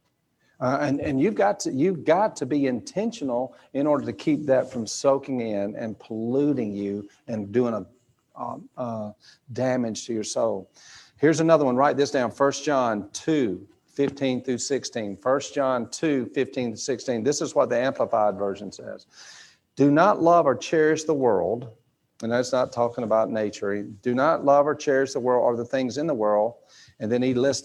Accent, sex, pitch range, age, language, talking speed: American, male, 110-140 Hz, 50-69, English, 185 wpm